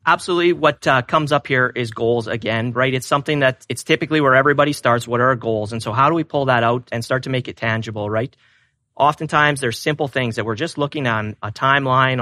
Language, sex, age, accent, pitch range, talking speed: English, male, 30-49, American, 120-140 Hz, 235 wpm